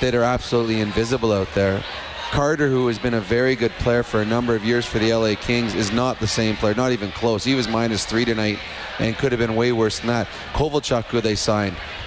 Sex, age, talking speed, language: male, 30-49, 240 wpm, English